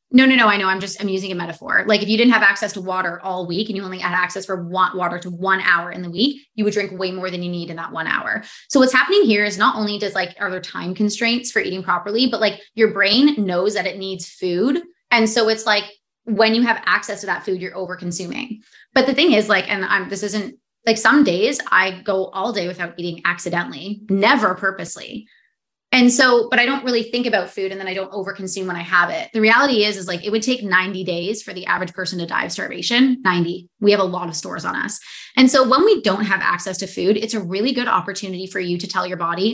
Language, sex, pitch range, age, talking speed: English, female, 185-225 Hz, 20-39, 260 wpm